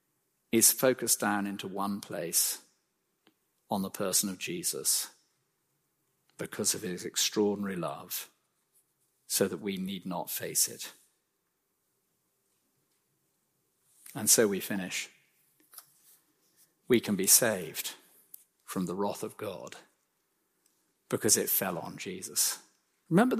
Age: 50-69